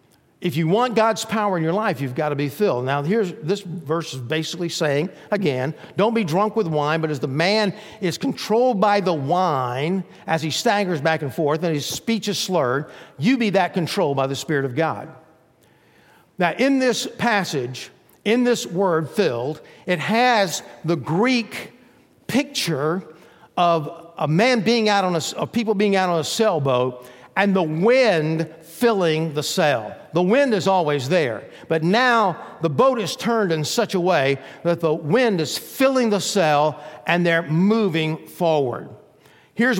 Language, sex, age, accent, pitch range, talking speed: English, male, 50-69, American, 150-205 Hz, 175 wpm